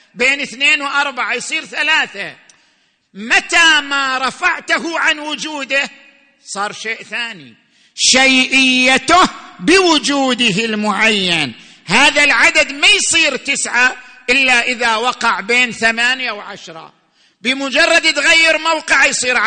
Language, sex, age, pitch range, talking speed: Arabic, male, 50-69, 230-305 Hz, 95 wpm